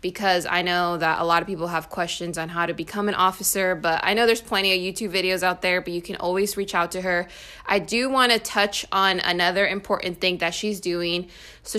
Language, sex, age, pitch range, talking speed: English, female, 20-39, 170-200 Hz, 240 wpm